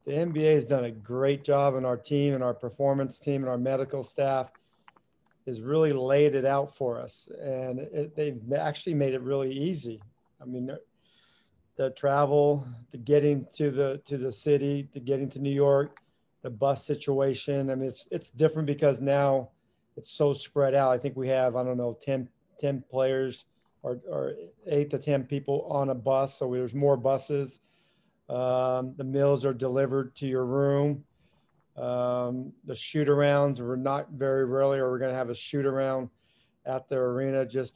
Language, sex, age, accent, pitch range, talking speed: English, male, 40-59, American, 130-145 Hz, 180 wpm